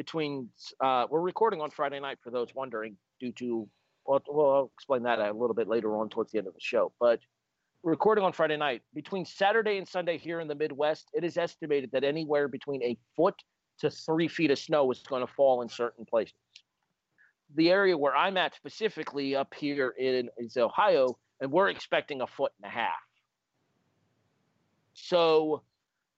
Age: 40-59